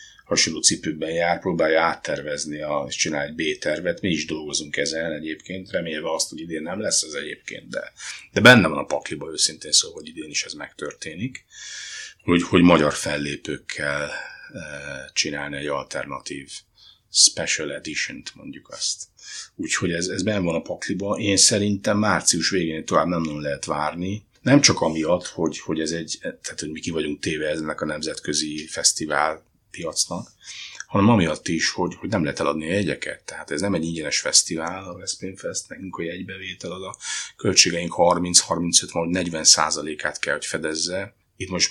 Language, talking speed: Hungarian, 160 wpm